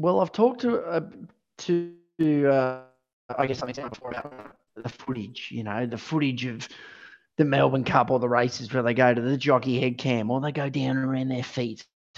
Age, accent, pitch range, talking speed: 30-49, Australian, 130-205 Hz, 200 wpm